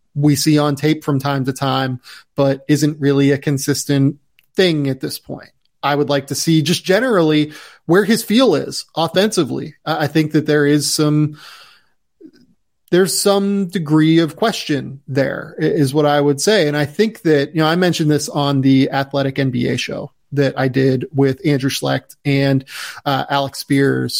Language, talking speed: English, 175 wpm